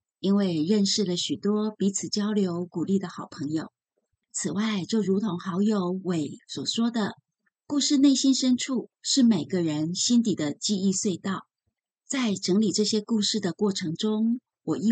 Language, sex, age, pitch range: Chinese, female, 30-49, 180-220 Hz